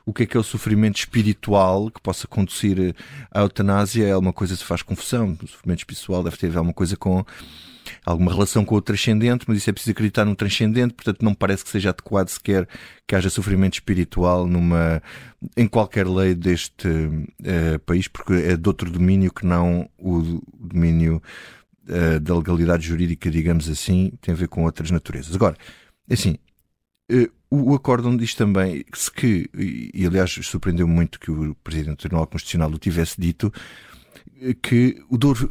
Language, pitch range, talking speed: Portuguese, 85-115 Hz, 175 wpm